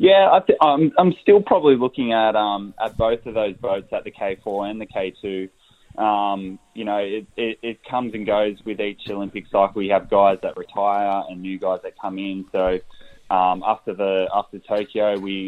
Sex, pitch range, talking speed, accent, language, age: male, 95-105 Hz, 200 wpm, Australian, English, 10-29